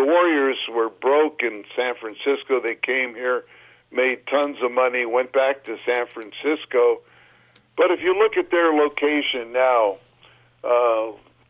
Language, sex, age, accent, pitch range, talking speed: English, male, 60-79, American, 125-150 Hz, 145 wpm